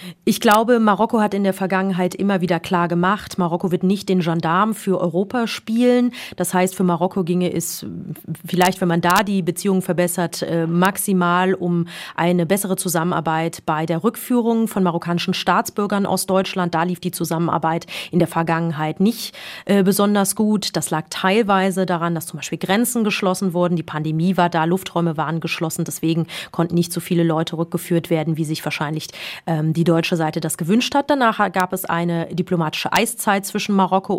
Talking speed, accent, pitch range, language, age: 170 wpm, German, 170-195 Hz, German, 30-49